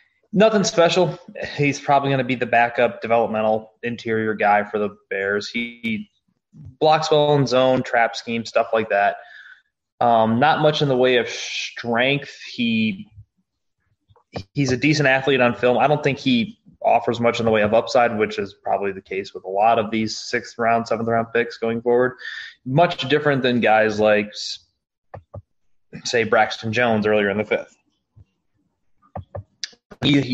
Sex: male